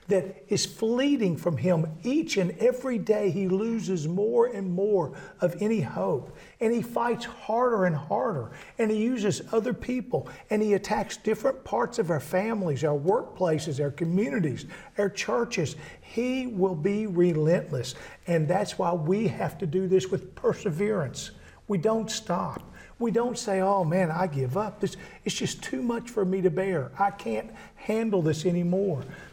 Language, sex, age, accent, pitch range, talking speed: English, male, 50-69, American, 155-215 Hz, 165 wpm